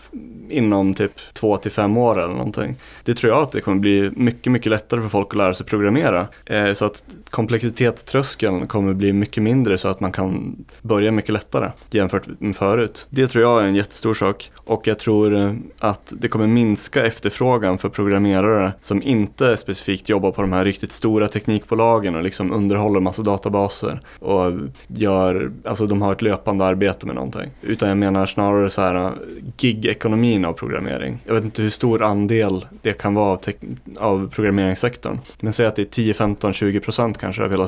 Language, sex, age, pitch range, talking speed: Swedish, male, 20-39, 95-110 Hz, 185 wpm